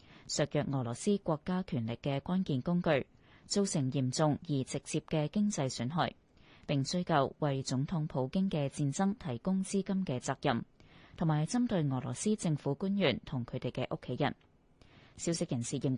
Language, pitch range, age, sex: Chinese, 130-175 Hz, 20-39, female